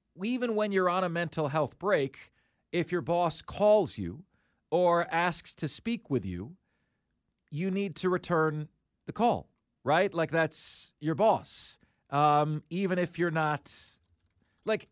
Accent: American